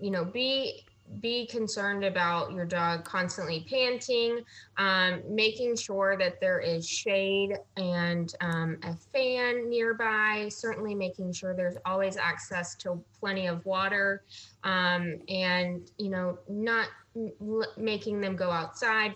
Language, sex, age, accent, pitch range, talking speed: English, female, 20-39, American, 180-215 Hz, 130 wpm